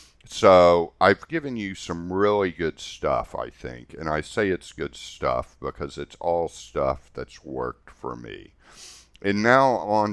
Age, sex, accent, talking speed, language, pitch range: 50-69, male, American, 160 wpm, English, 65-85 Hz